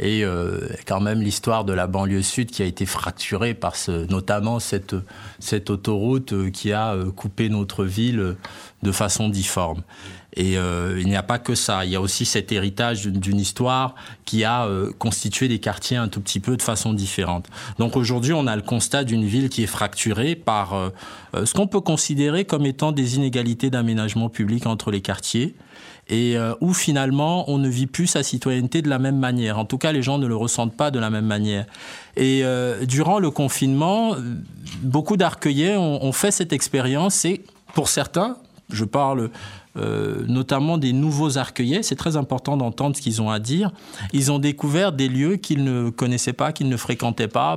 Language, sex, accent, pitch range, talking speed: French, male, French, 110-145 Hz, 190 wpm